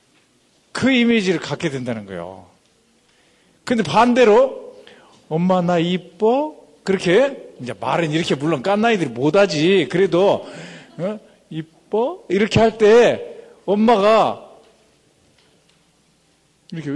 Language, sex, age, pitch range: Korean, male, 50-69, 140-215 Hz